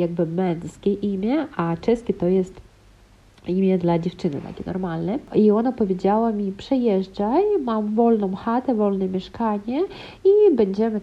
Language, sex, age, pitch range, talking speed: Polish, female, 40-59, 195-240 Hz, 130 wpm